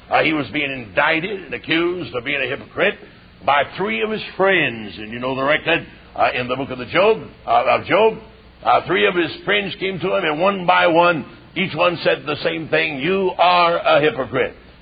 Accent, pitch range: American, 145-195 Hz